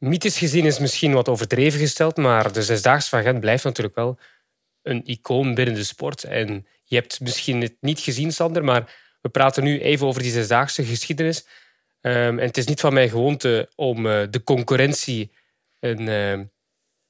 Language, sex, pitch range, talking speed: English, male, 120-140 Hz, 175 wpm